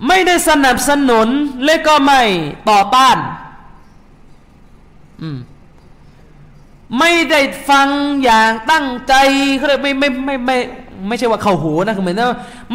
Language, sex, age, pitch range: Thai, male, 20-39, 160-245 Hz